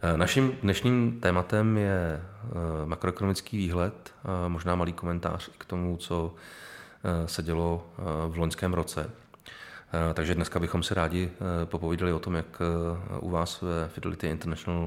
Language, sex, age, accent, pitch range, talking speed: Czech, male, 30-49, native, 85-95 Hz, 130 wpm